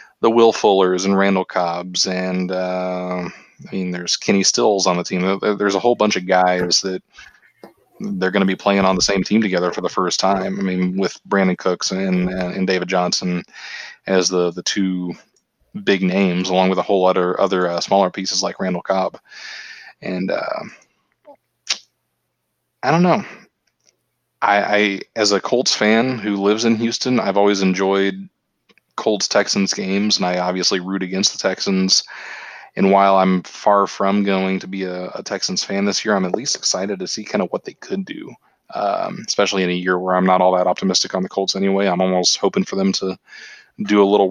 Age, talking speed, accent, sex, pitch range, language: 20-39, 195 wpm, American, male, 90-100 Hz, English